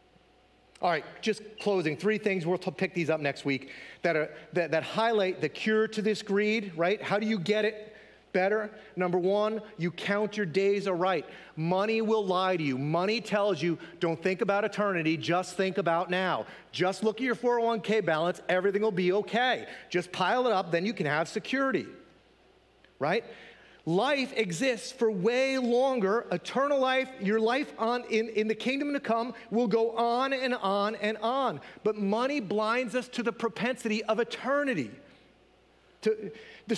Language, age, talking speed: English, 40-59, 170 wpm